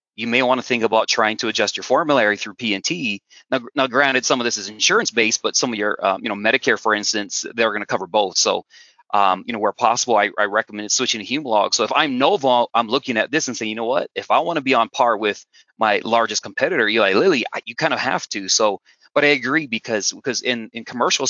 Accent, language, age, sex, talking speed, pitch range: American, English, 30-49, male, 255 wpm, 110-130 Hz